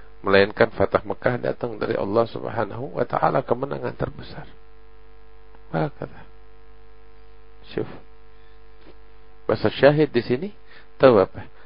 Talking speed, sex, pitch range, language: 80 wpm, male, 95-115 Hz, Indonesian